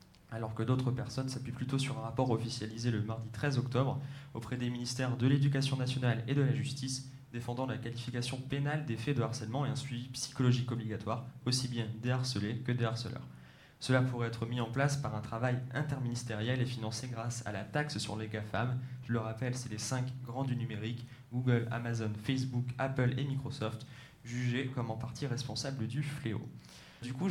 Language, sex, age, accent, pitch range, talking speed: French, male, 20-39, French, 115-130 Hz, 190 wpm